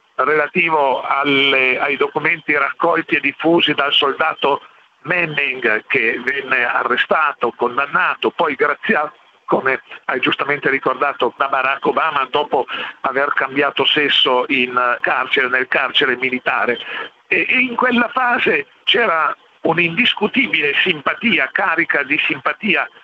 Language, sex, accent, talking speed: Italian, male, native, 110 wpm